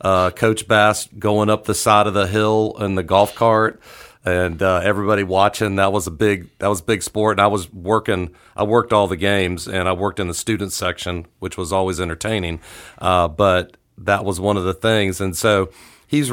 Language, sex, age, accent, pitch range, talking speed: English, male, 40-59, American, 95-110 Hz, 210 wpm